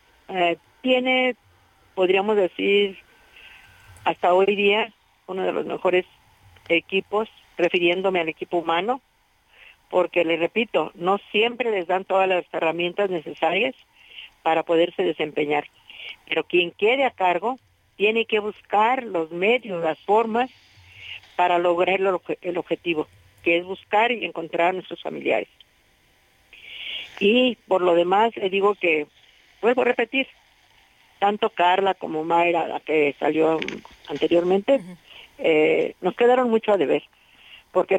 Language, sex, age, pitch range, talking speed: Spanish, female, 50-69, 170-215 Hz, 125 wpm